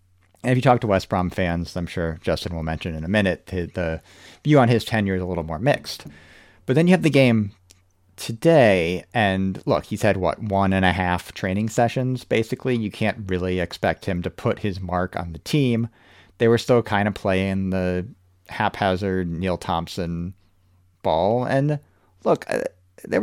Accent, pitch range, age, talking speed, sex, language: American, 90-115 Hz, 40-59, 185 wpm, male, English